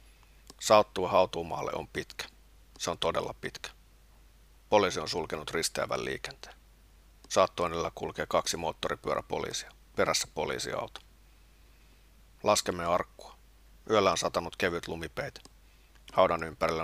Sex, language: male, Finnish